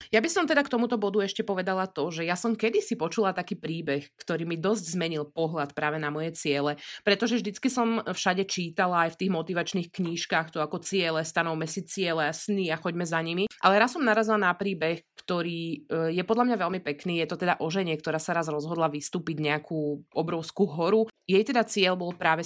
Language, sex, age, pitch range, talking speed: Slovak, female, 20-39, 165-205 Hz, 210 wpm